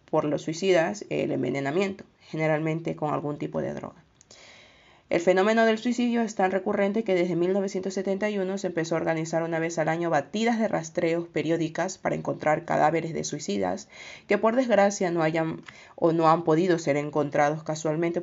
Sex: female